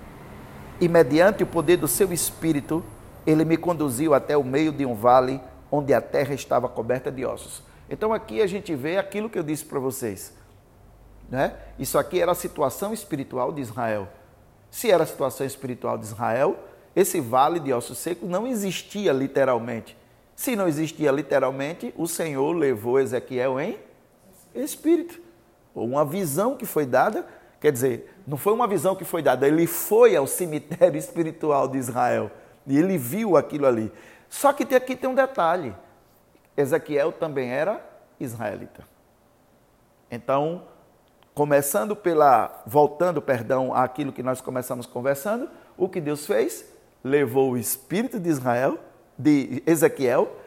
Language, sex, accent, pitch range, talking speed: Portuguese, male, Brazilian, 130-200 Hz, 150 wpm